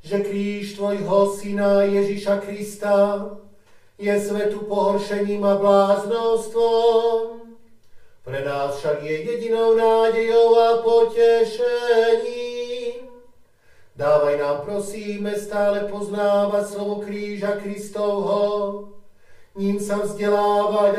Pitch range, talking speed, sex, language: 205-235 Hz, 85 wpm, male, Slovak